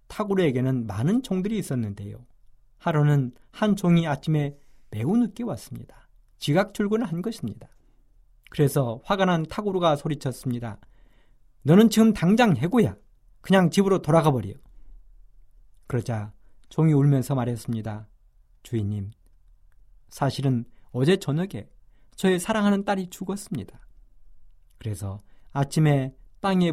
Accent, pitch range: native, 115-180 Hz